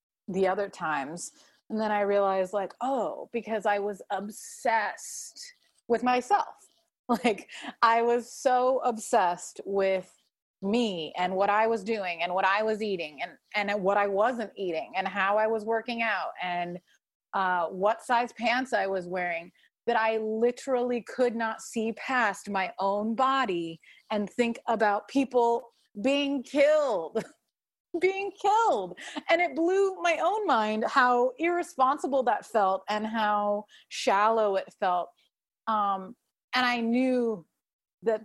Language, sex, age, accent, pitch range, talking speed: English, female, 30-49, American, 190-245 Hz, 140 wpm